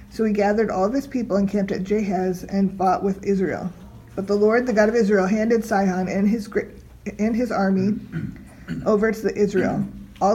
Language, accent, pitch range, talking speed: English, American, 195-220 Hz, 185 wpm